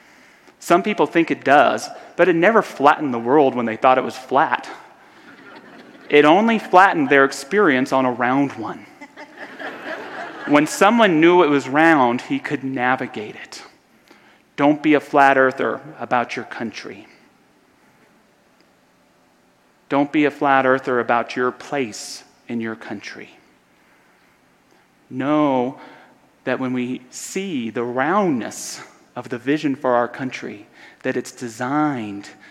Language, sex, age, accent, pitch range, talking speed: English, male, 30-49, American, 125-155 Hz, 130 wpm